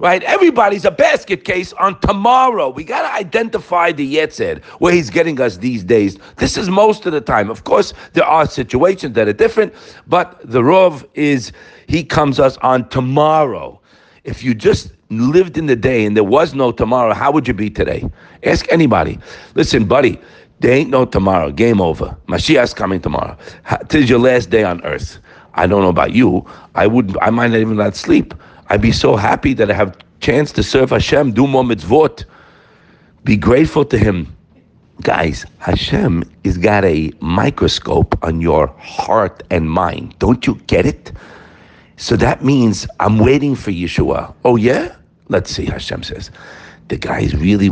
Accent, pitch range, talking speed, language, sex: American, 105-175 Hz, 175 wpm, English, male